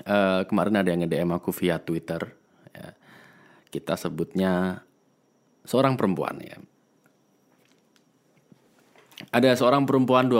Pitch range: 90-115 Hz